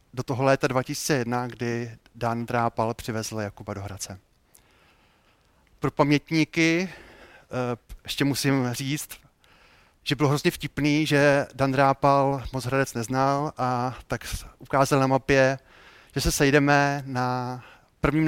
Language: Czech